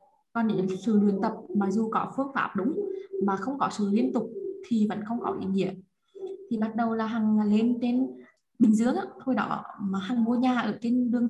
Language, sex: Vietnamese, female